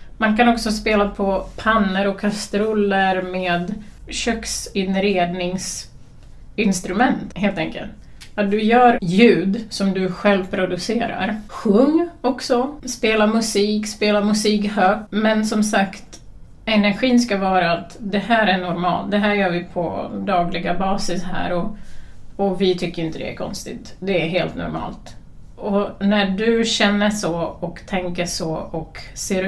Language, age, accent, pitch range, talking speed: Swedish, 30-49, native, 175-210 Hz, 140 wpm